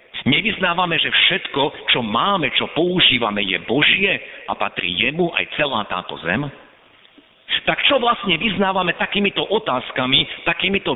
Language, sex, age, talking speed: Slovak, male, 50-69, 125 wpm